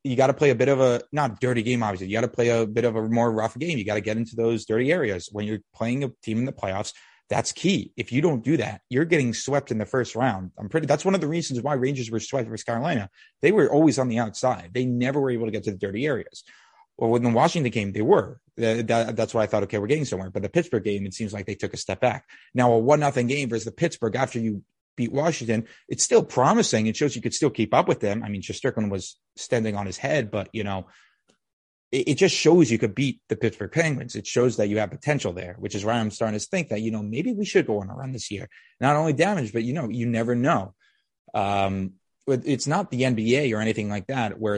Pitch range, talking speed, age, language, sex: 105-135 Hz, 275 wpm, 30-49, English, male